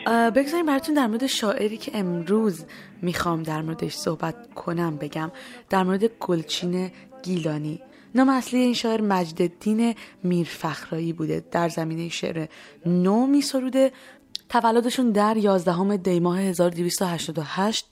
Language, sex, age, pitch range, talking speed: Persian, female, 20-39, 160-210 Hz, 115 wpm